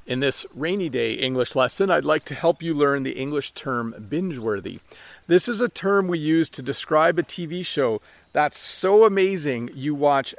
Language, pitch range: English, 130-170 Hz